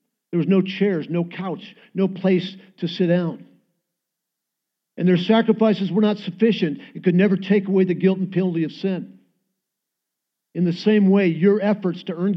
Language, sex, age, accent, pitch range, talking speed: English, male, 50-69, American, 190-235 Hz, 175 wpm